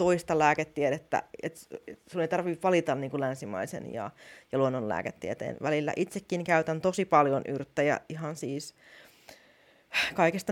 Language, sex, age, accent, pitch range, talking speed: Finnish, female, 30-49, native, 155-195 Hz, 120 wpm